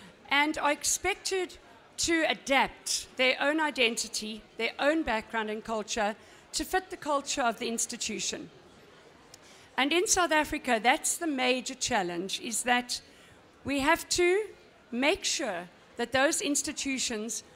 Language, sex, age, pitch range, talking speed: English, female, 50-69, 240-315 Hz, 130 wpm